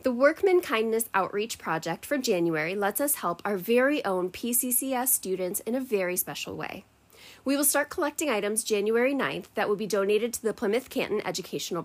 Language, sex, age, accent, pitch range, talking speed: English, female, 20-39, American, 185-255 Hz, 180 wpm